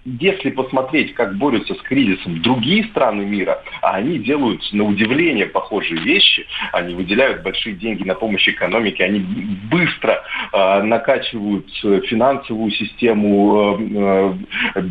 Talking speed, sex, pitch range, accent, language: 115 wpm, male, 95-120 Hz, native, Russian